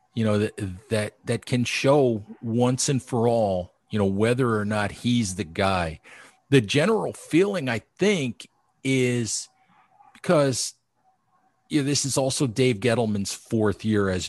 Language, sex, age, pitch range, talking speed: English, male, 40-59, 105-125 Hz, 150 wpm